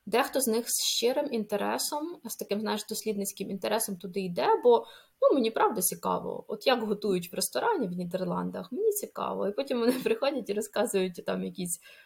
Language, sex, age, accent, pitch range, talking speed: Ukrainian, female, 20-39, native, 185-220 Hz, 175 wpm